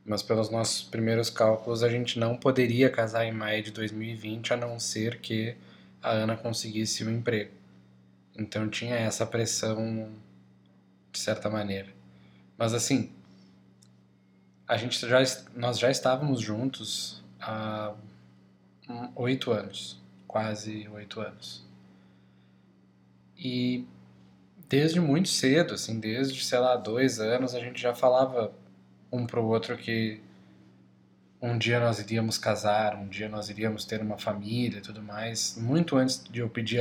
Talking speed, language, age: 140 wpm, Portuguese, 10-29